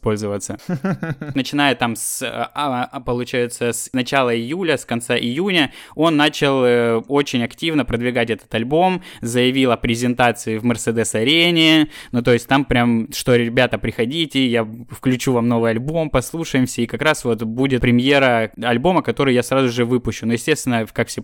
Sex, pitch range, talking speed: male, 115-135 Hz, 145 wpm